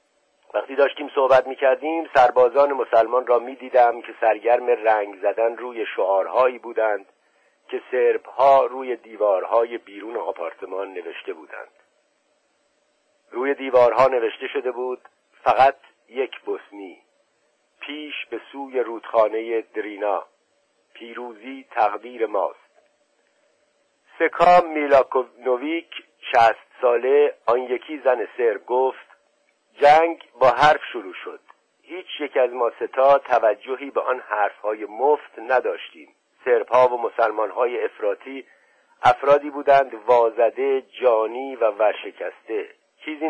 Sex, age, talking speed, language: male, 50-69, 105 wpm, Persian